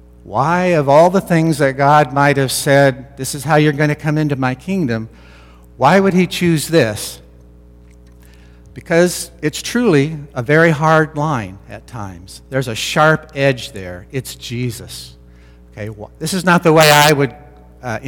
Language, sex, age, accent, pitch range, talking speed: English, male, 60-79, American, 100-155 Hz, 165 wpm